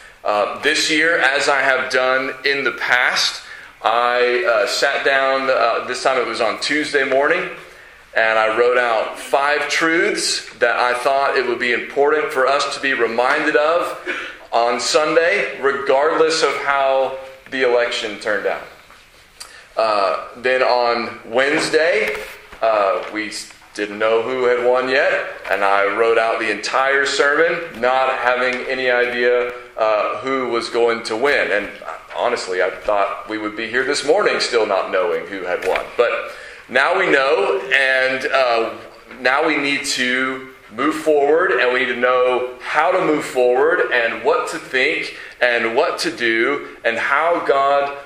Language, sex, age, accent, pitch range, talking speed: English, male, 30-49, American, 120-140 Hz, 160 wpm